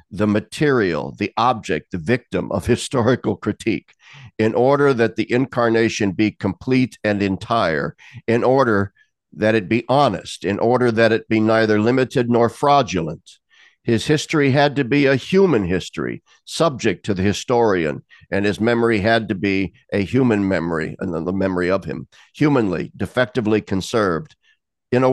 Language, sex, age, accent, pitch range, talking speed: English, male, 60-79, American, 95-125 Hz, 155 wpm